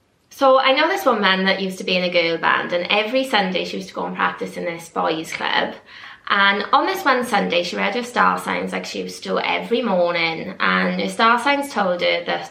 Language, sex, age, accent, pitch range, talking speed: English, female, 20-39, British, 195-270 Hz, 240 wpm